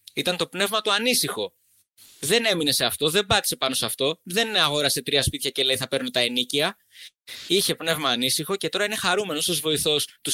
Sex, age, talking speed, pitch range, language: male, 20-39, 195 wpm, 125-170 Hz, Greek